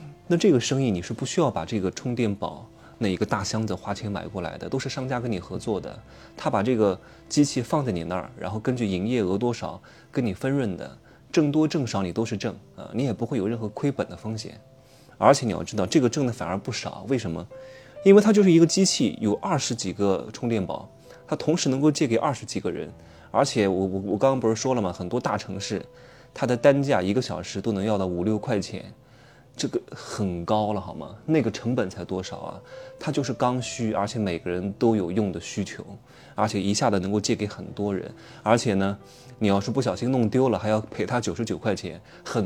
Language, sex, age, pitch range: Chinese, male, 20-39, 100-130 Hz